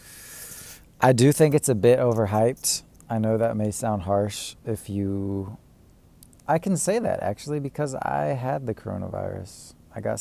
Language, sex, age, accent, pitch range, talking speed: English, male, 20-39, American, 100-120 Hz, 160 wpm